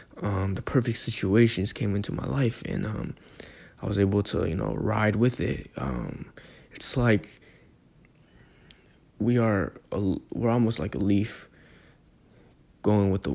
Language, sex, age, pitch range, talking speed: English, male, 20-39, 100-120 Hz, 150 wpm